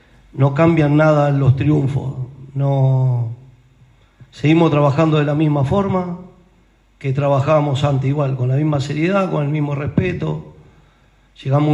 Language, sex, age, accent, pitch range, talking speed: Spanish, male, 40-59, Argentinian, 135-160 Hz, 130 wpm